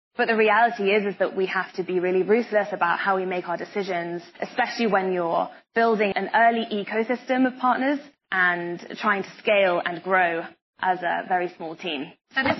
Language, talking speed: English, 190 wpm